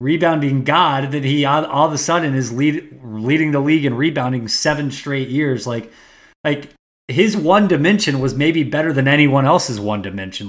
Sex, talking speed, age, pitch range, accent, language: male, 185 wpm, 20-39, 125-150 Hz, American, English